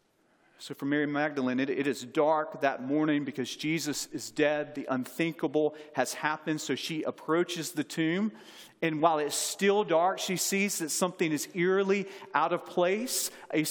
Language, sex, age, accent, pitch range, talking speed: English, male, 40-59, American, 175-250 Hz, 165 wpm